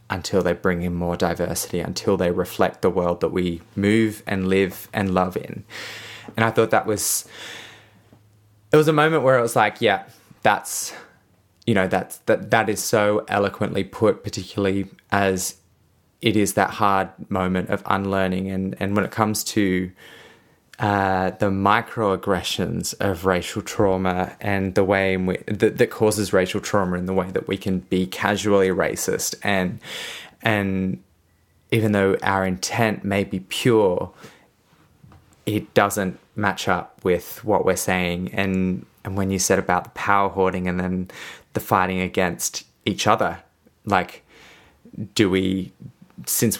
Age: 20-39